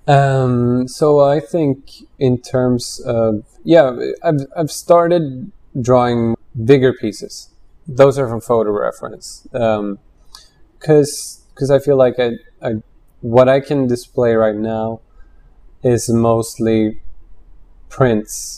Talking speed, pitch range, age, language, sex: 115 wpm, 110-130 Hz, 20-39, English, male